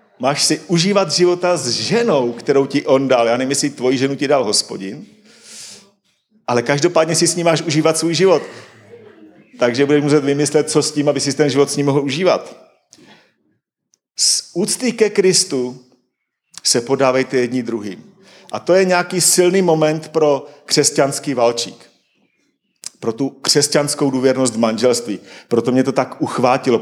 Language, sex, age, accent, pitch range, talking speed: Czech, male, 40-59, native, 120-155 Hz, 155 wpm